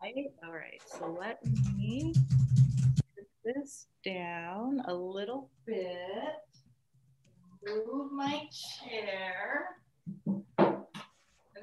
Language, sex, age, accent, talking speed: English, female, 40-59, American, 75 wpm